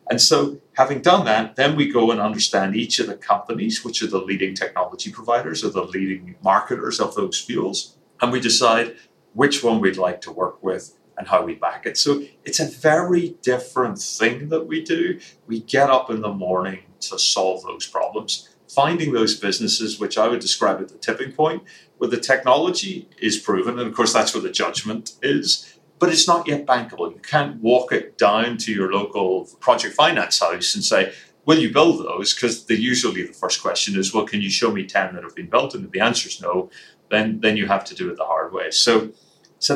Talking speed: 215 wpm